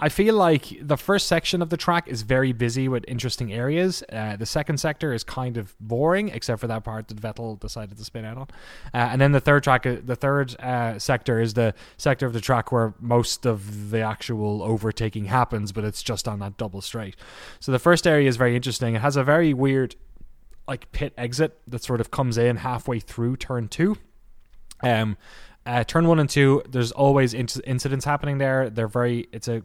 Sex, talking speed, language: male, 210 wpm, English